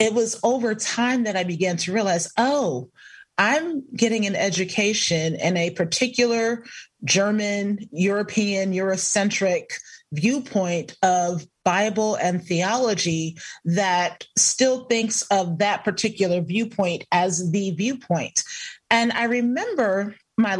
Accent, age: American, 30-49